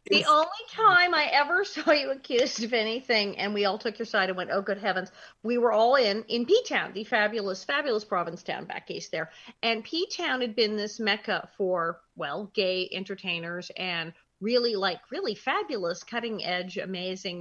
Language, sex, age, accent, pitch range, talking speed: English, female, 40-59, American, 190-245 Hz, 190 wpm